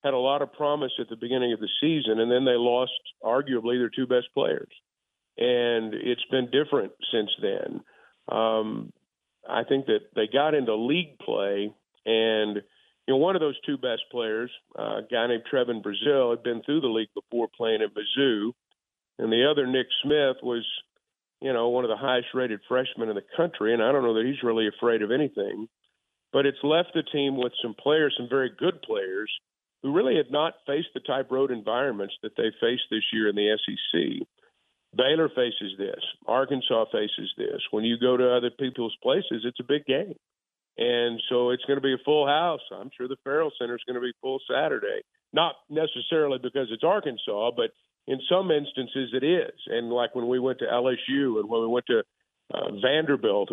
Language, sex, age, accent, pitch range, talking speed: English, male, 50-69, American, 115-140 Hz, 195 wpm